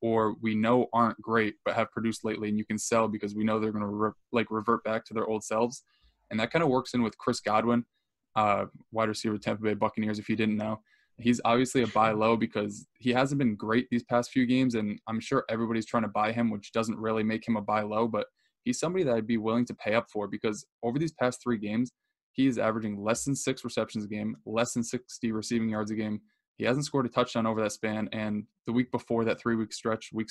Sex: male